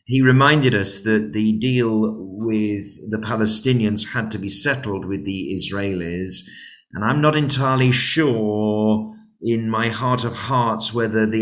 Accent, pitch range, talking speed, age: British, 105-125 Hz, 145 wpm, 40-59